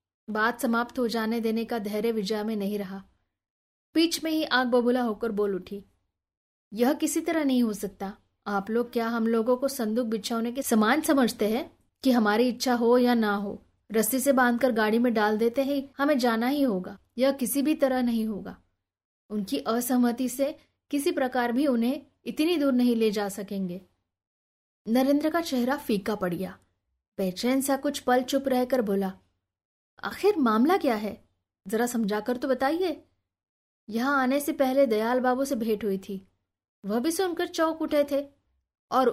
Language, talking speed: Hindi, 175 wpm